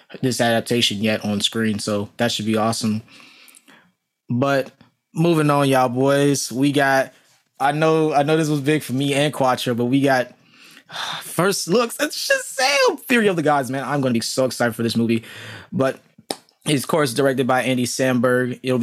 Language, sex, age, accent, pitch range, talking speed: English, male, 20-39, American, 125-145 Hz, 190 wpm